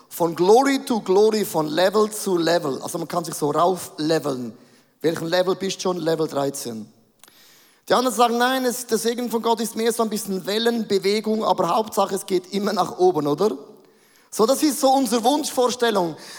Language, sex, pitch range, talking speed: German, male, 185-240 Hz, 185 wpm